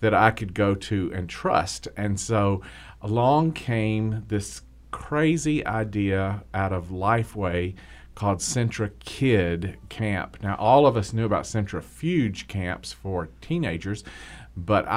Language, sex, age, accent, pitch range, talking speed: English, male, 40-59, American, 95-115 Hz, 130 wpm